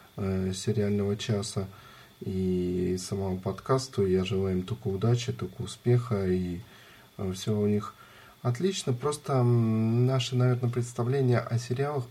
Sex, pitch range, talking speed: male, 100-125 Hz, 115 wpm